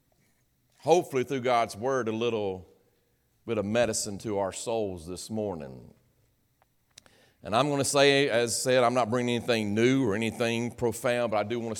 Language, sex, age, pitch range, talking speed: English, male, 40-59, 105-130 Hz, 180 wpm